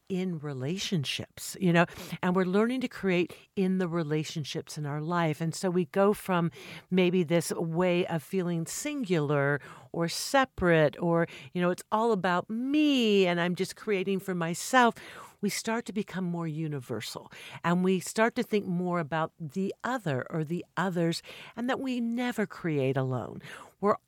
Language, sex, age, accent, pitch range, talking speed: English, female, 50-69, American, 160-205 Hz, 165 wpm